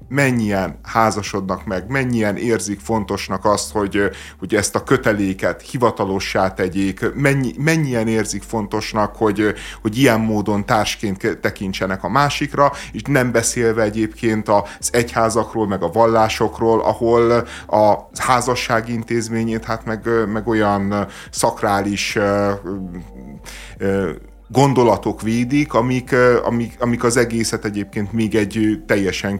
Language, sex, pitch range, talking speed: Hungarian, male, 100-115 Hz, 110 wpm